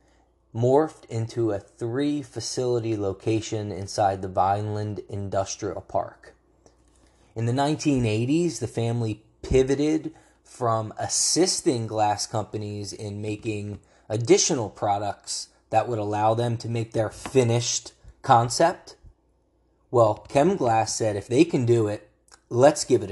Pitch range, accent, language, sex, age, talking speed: 100-125 Hz, American, English, male, 20-39, 115 wpm